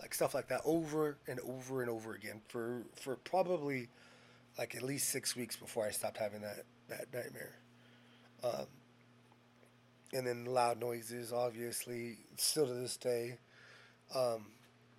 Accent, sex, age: American, male, 20-39